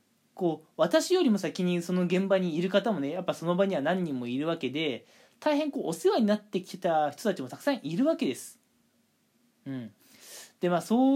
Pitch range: 175-250 Hz